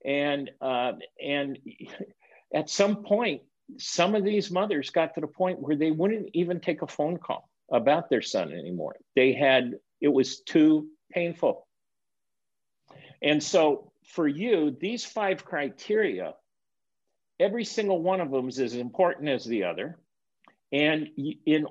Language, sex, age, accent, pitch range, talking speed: English, male, 50-69, American, 140-195 Hz, 145 wpm